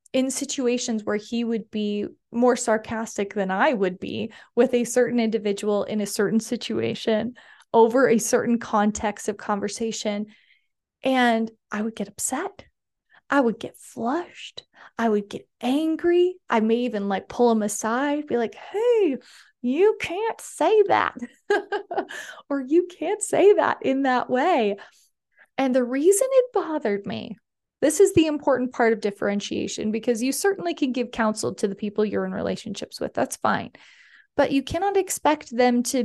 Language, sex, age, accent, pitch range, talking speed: English, female, 20-39, American, 220-290 Hz, 160 wpm